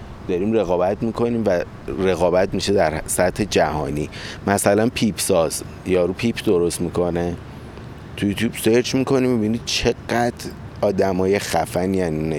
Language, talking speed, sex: Persian, 135 wpm, male